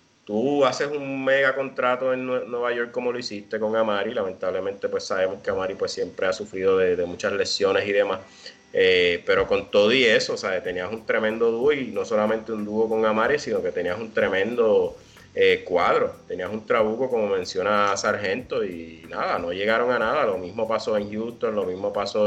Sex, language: male, English